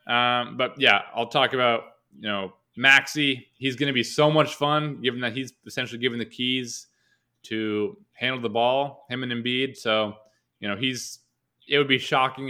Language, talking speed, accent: English, 180 wpm, American